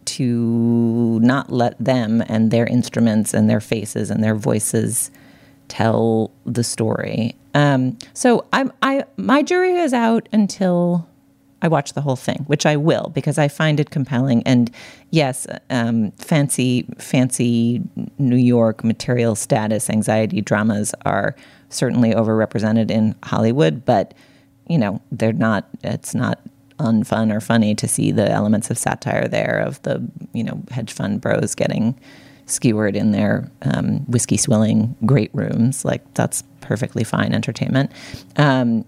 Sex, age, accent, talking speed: female, 30-49, American, 145 wpm